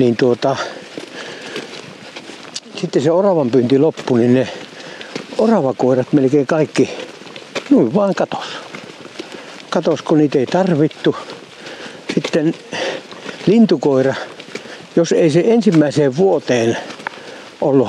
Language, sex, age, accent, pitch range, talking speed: Finnish, male, 60-79, native, 125-165 Hz, 85 wpm